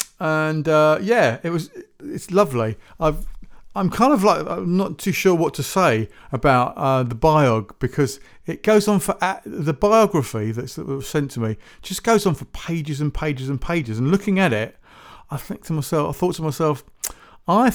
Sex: male